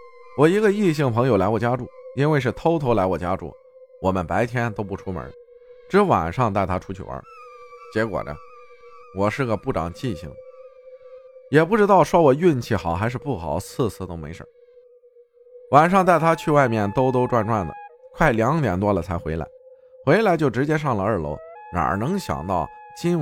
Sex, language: male, Chinese